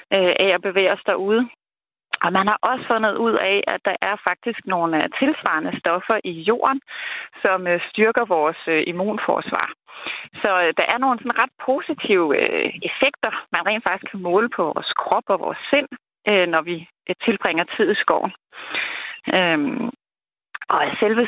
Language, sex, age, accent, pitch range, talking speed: Danish, female, 30-49, native, 175-235 Hz, 145 wpm